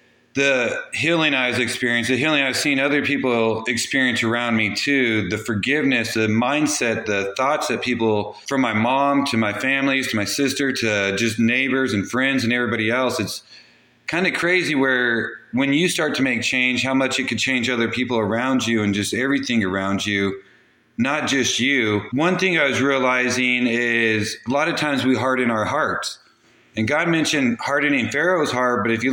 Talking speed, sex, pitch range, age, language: 185 wpm, male, 115-140 Hz, 30-49, English